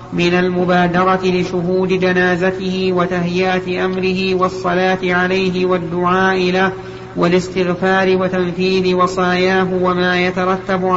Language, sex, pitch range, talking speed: Arabic, male, 185-190 Hz, 80 wpm